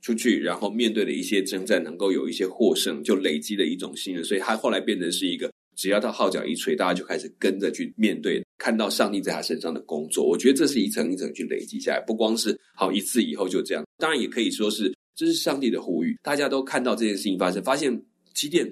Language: Chinese